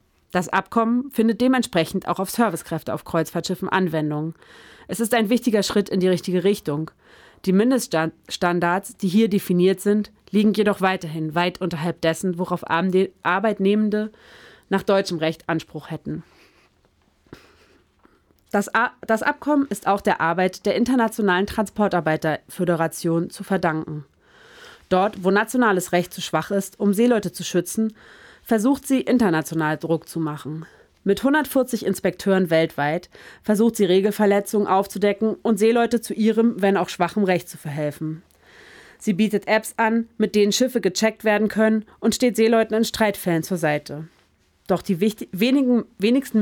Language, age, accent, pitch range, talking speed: German, 30-49, German, 175-220 Hz, 135 wpm